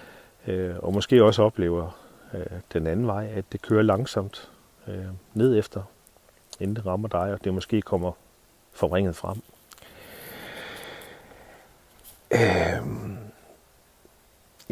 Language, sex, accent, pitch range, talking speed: Danish, male, native, 90-120 Hz, 105 wpm